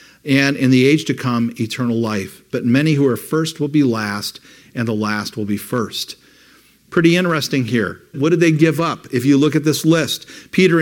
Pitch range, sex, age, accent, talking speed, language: 125-155 Hz, male, 50-69, American, 205 wpm, English